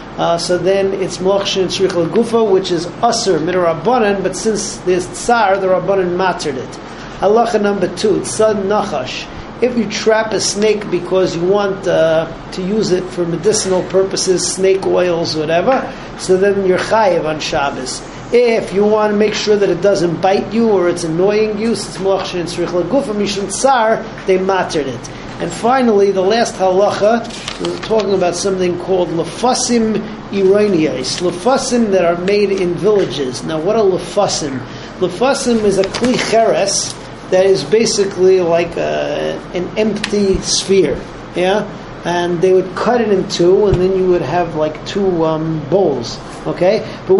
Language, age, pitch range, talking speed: English, 40-59, 180-210 Hz, 165 wpm